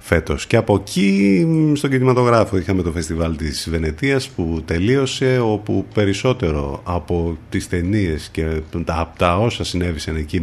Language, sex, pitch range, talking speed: Greek, male, 85-110 Hz, 145 wpm